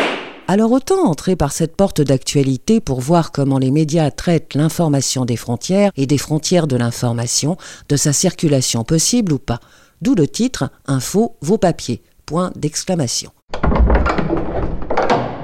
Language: French